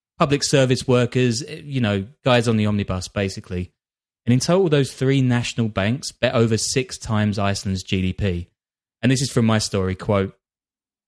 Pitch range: 95-120 Hz